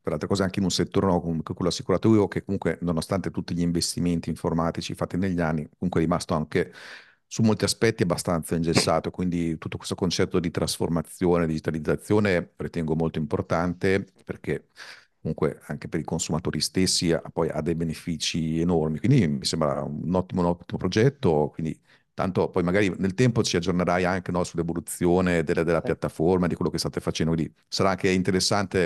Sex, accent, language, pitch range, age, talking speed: male, native, Italian, 85-100 Hz, 50-69, 175 wpm